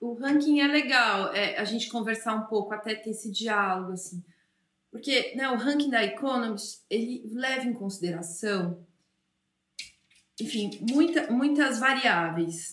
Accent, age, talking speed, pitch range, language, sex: Brazilian, 30-49, 135 wpm, 200-270 Hz, Portuguese, female